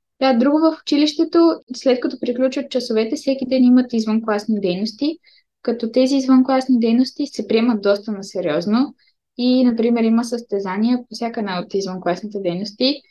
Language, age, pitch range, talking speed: Bulgarian, 20-39, 205-250 Hz, 145 wpm